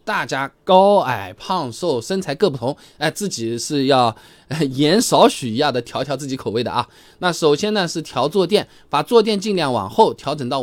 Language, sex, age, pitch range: Chinese, male, 20-39, 125-205 Hz